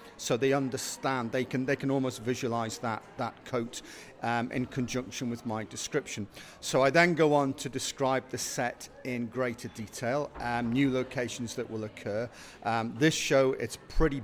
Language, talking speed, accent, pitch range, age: English, 175 wpm, British, 120-145 Hz, 50-69